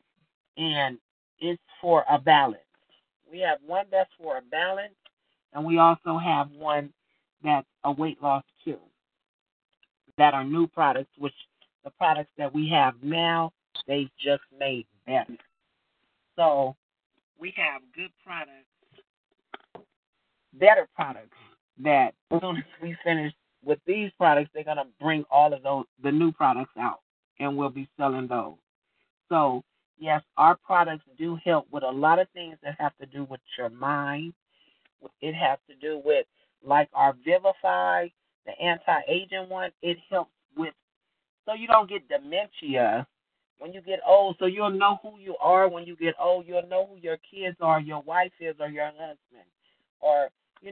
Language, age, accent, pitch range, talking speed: English, 40-59, American, 145-180 Hz, 155 wpm